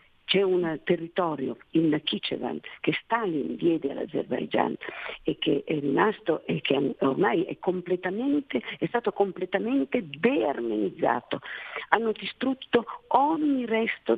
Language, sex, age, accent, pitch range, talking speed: Italian, female, 50-69, native, 165-230 Hz, 110 wpm